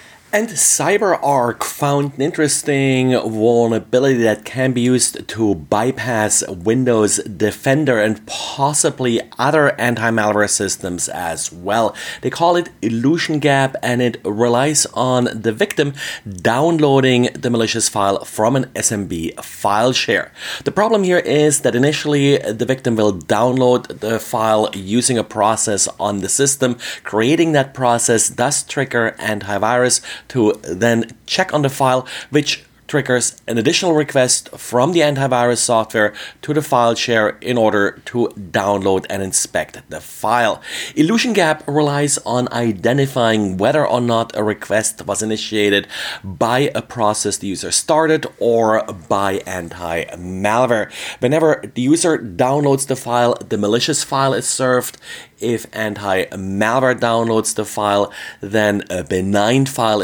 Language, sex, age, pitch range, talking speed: English, male, 30-49, 105-135 Hz, 135 wpm